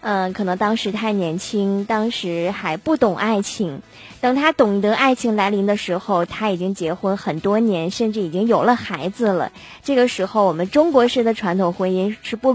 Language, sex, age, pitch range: Chinese, female, 20-39, 190-245 Hz